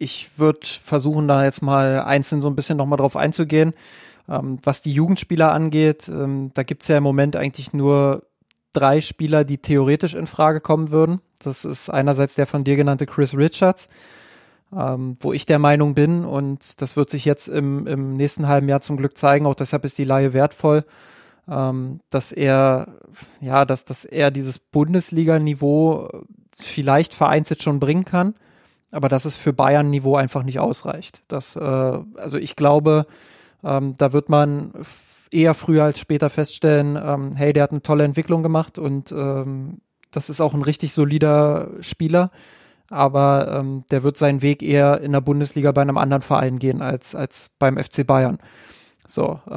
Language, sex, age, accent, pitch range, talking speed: German, male, 20-39, German, 140-155 Hz, 165 wpm